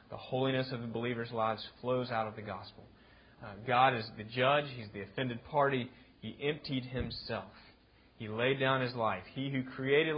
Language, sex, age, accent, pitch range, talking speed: English, male, 30-49, American, 115-140 Hz, 185 wpm